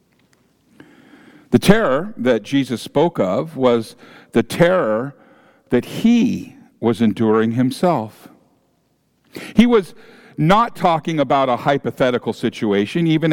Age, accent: 50-69, American